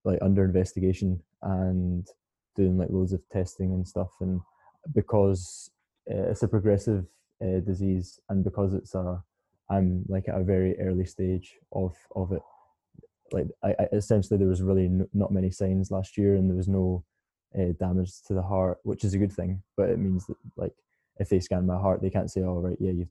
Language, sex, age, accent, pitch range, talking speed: English, male, 20-39, British, 90-95 Hz, 205 wpm